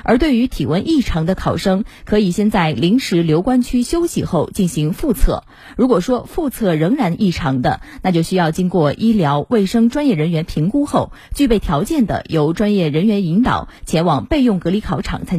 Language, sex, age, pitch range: Chinese, female, 20-39, 170-235 Hz